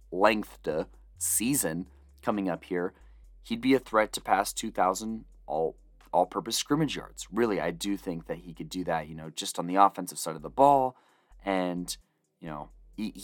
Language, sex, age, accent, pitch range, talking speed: English, male, 30-49, American, 85-110 Hz, 180 wpm